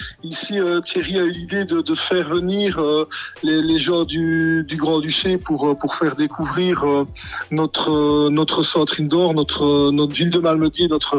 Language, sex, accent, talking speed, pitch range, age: French, male, French, 155 wpm, 155-180 Hz, 50-69